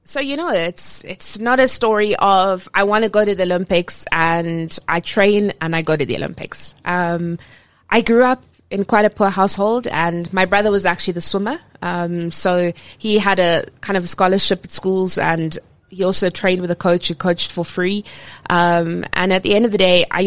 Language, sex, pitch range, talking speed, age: English, female, 170-200 Hz, 215 wpm, 20-39